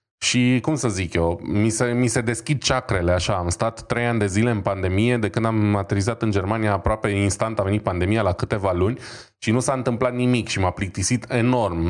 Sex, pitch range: male, 95-115 Hz